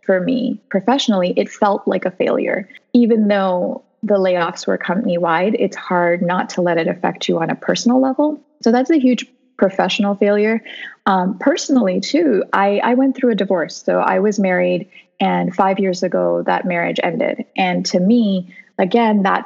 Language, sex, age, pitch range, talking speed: English, female, 20-39, 185-230 Hz, 175 wpm